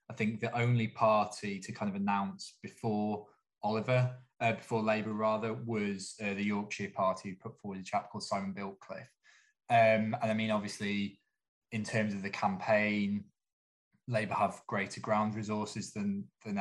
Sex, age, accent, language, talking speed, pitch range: male, 20-39, British, English, 165 wpm, 100-125 Hz